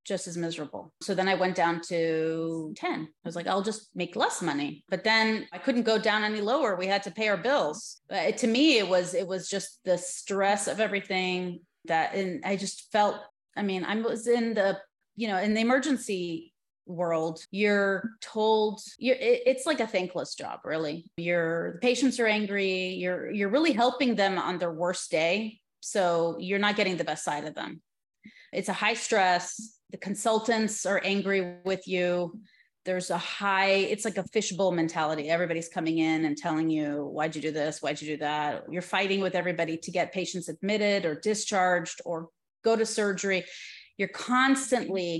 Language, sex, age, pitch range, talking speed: English, female, 30-49, 170-215 Hz, 185 wpm